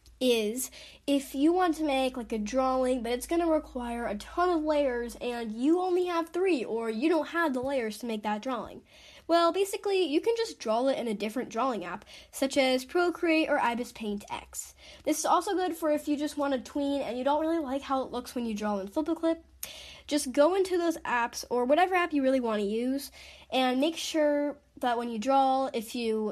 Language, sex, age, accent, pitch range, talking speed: English, female, 10-29, American, 225-305 Hz, 230 wpm